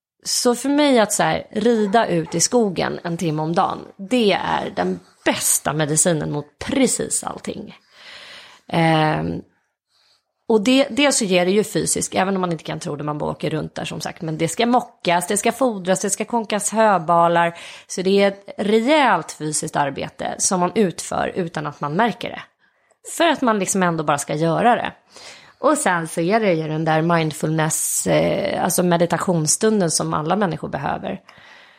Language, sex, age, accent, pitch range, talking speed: English, female, 30-49, Swedish, 165-230 Hz, 175 wpm